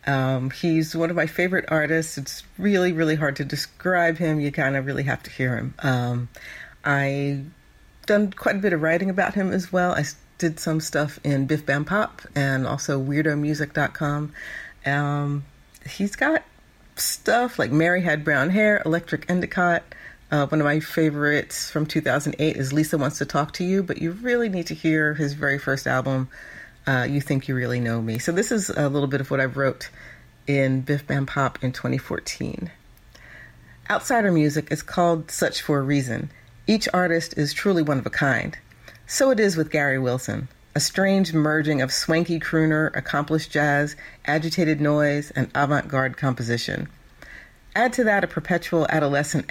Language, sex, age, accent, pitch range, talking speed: English, female, 40-59, American, 135-170 Hz, 175 wpm